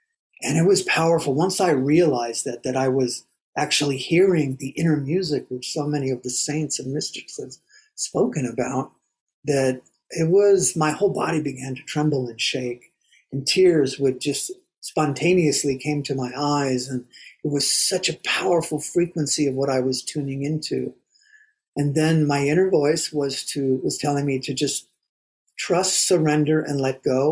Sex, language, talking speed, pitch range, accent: male, English, 170 wpm, 135-170 Hz, American